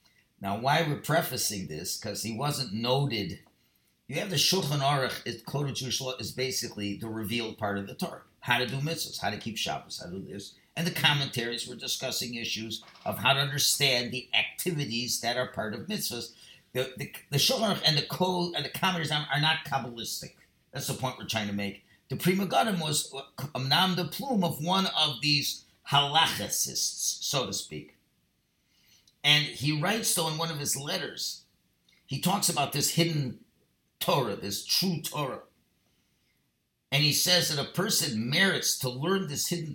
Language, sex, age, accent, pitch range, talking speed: English, male, 50-69, American, 125-175 Hz, 185 wpm